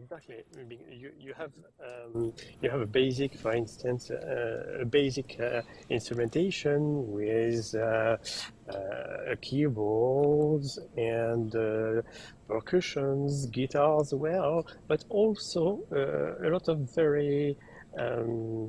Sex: male